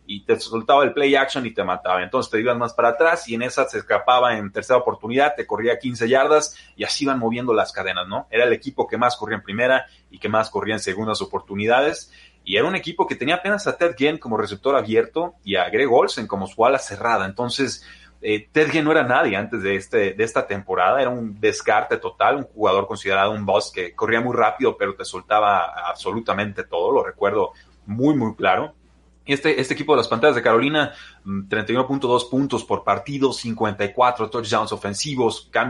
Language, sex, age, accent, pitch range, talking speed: Spanish, male, 30-49, Mexican, 110-145 Hz, 200 wpm